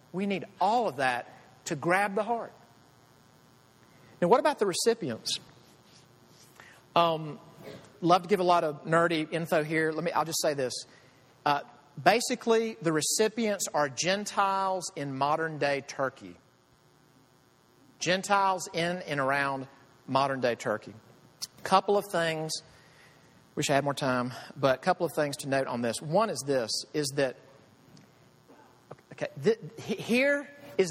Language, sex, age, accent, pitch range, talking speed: English, male, 40-59, American, 130-185 Hz, 140 wpm